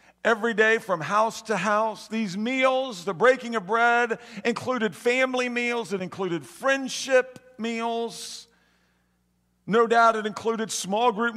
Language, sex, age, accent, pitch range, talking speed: English, male, 50-69, American, 140-220 Hz, 130 wpm